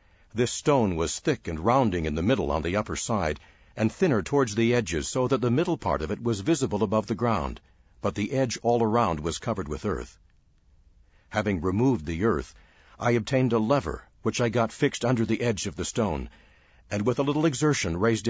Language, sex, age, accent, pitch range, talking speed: English, male, 60-79, American, 80-120 Hz, 205 wpm